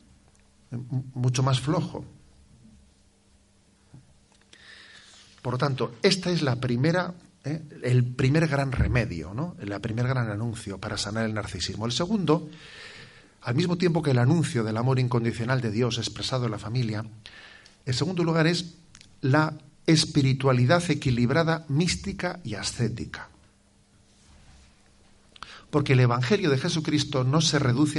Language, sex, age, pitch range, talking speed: Spanish, male, 50-69, 105-145 Hz, 125 wpm